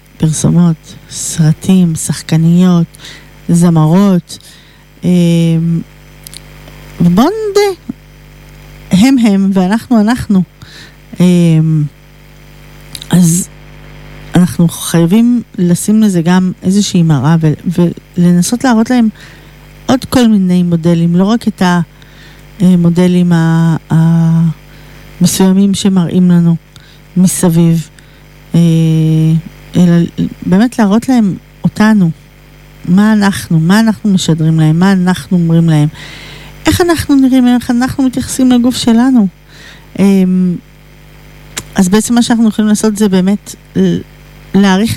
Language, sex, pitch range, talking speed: Hebrew, female, 155-205 Hz, 95 wpm